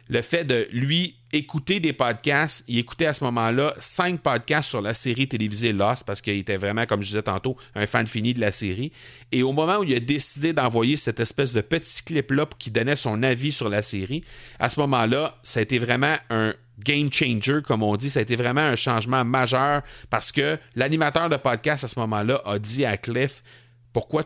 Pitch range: 110-140 Hz